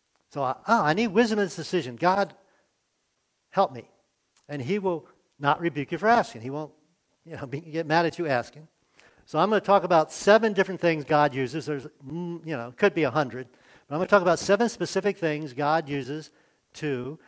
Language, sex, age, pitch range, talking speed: English, male, 50-69, 135-180 Hz, 200 wpm